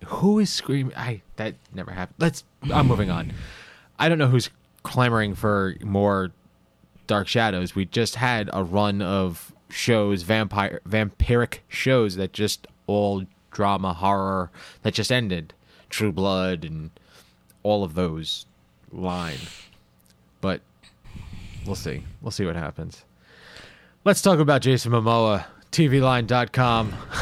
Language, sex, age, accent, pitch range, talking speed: English, male, 20-39, American, 95-130 Hz, 130 wpm